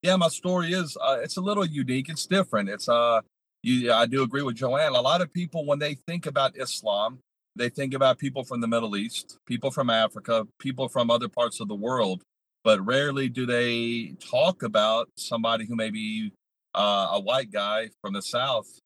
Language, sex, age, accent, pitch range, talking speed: English, male, 40-59, American, 110-150 Hz, 200 wpm